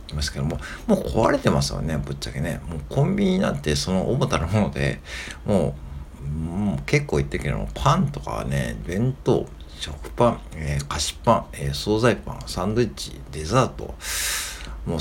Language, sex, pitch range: Japanese, male, 70-110 Hz